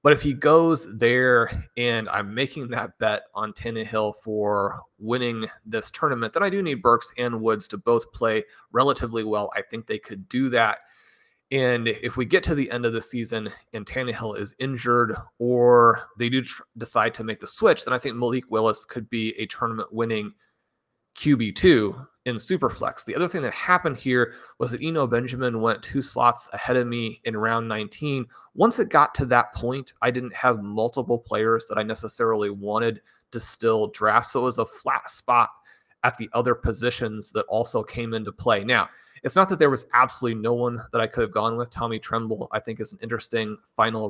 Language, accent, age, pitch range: English, American, 30-49, 110-125 Hz